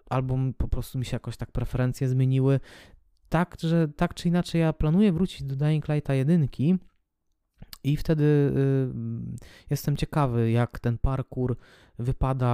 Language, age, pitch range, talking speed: Polish, 20-39, 120-145 Hz, 145 wpm